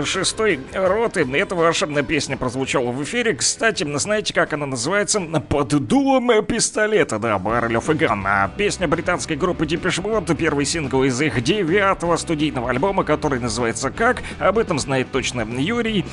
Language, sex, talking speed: Russian, male, 150 wpm